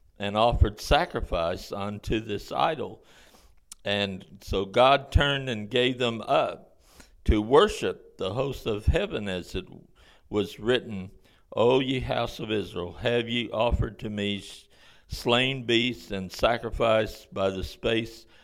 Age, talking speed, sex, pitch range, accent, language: 60-79, 135 wpm, male, 100-120 Hz, American, English